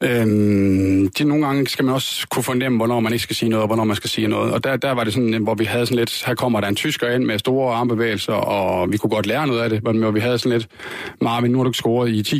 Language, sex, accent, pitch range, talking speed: Danish, male, native, 110-130 Hz, 295 wpm